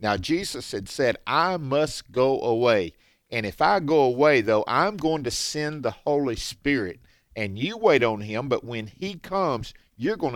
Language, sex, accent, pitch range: English, male, American, 115-155 Hz